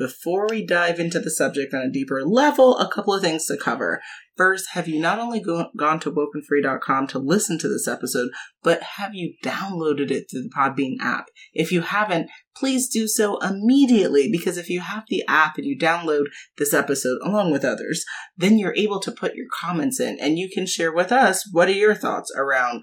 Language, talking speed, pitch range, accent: English, 205 wpm, 145-210 Hz, American